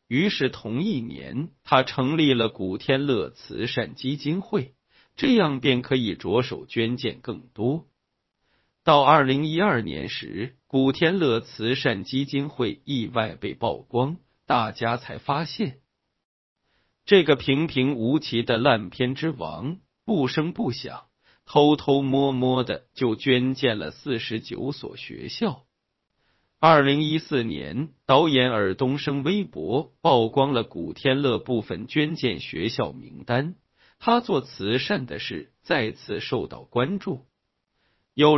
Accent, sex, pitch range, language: native, male, 120-150 Hz, Chinese